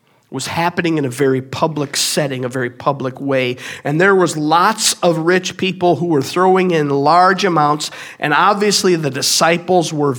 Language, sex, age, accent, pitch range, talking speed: English, male, 50-69, American, 130-160 Hz, 170 wpm